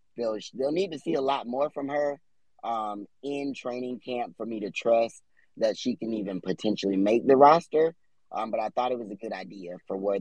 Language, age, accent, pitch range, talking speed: English, 20-39, American, 105-125 Hz, 215 wpm